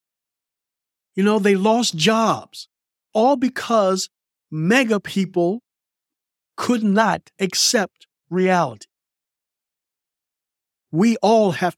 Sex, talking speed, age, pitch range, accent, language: male, 80 wpm, 50-69, 150-195 Hz, American, English